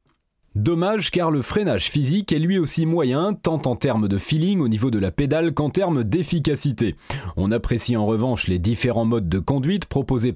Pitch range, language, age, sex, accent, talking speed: 115-170 Hz, French, 30-49, male, French, 185 wpm